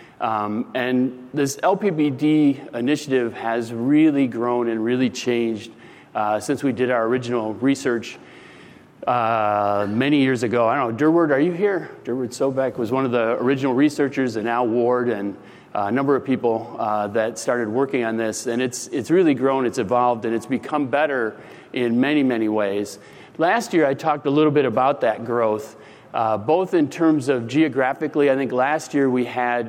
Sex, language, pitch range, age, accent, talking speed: male, English, 115-140 Hz, 40-59, American, 180 wpm